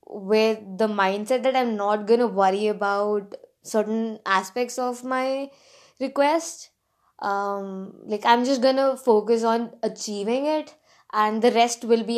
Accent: Indian